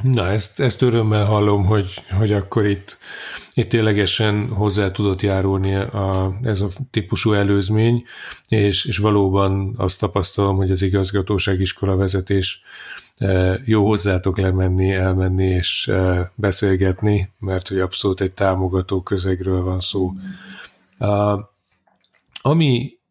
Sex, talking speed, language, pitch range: male, 115 wpm, Hungarian, 95-105 Hz